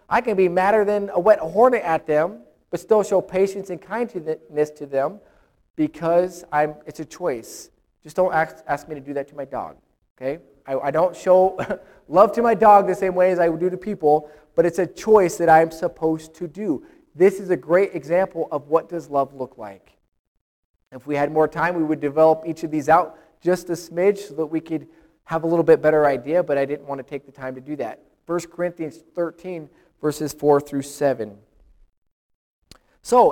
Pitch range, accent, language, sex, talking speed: 150-190 Hz, American, English, male, 210 wpm